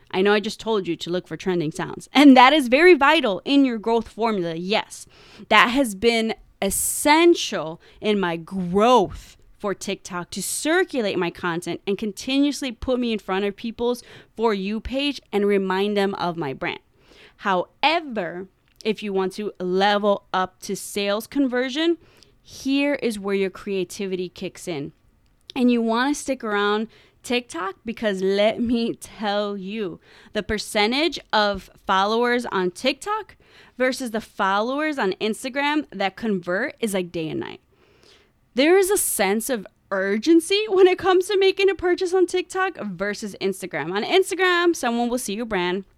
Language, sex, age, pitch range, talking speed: English, female, 20-39, 195-270 Hz, 160 wpm